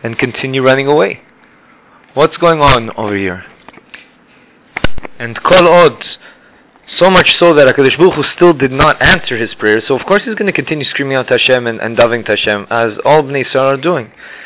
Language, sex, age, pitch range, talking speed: English, male, 30-49, 120-150 Hz, 175 wpm